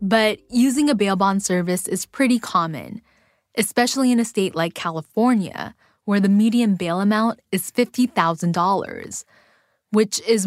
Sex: female